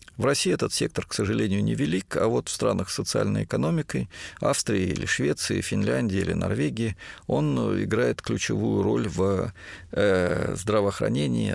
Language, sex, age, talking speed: Russian, male, 50-69, 135 wpm